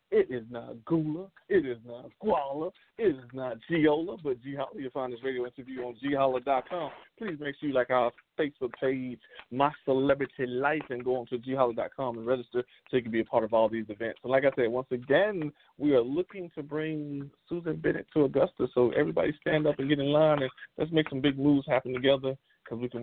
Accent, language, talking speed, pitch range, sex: American, English, 215 wpm, 120-145 Hz, male